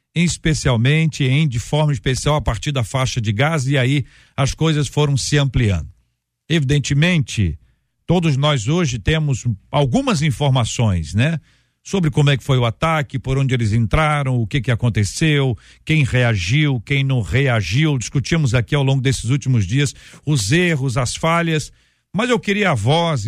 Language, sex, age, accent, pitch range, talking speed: Portuguese, male, 50-69, Brazilian, 125-155 Hz, 160 wpm